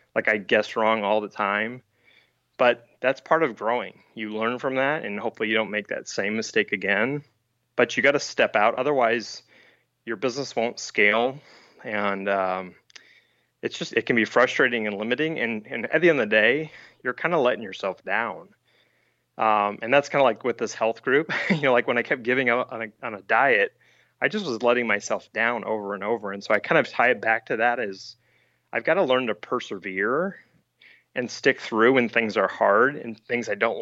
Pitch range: 105-125 Hz